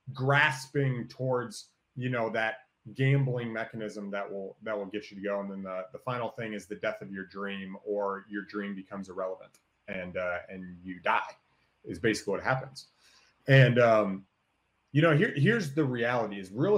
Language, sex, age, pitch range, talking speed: English, male, 30-49, 105-145 Hz, 180 wpm